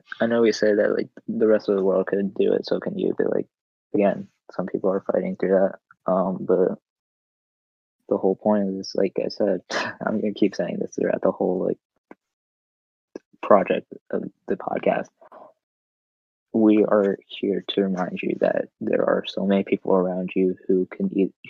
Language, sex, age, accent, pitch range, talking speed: English, male, 20-39, American, 95-105 Hz, 180 wpm